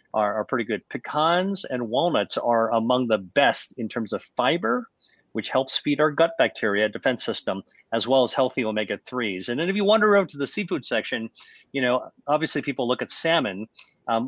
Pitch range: 115-145 Hz